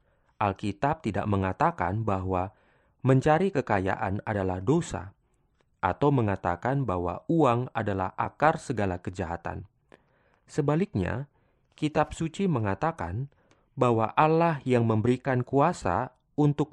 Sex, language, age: male, Indonesian, 30-49